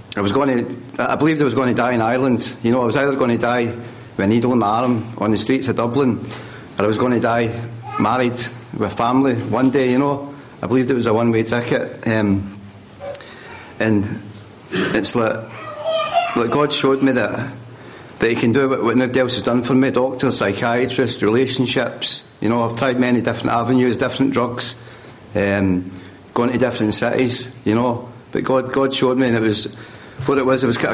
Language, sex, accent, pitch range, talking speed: English, male, British, 110-130 Hz, 205 wpm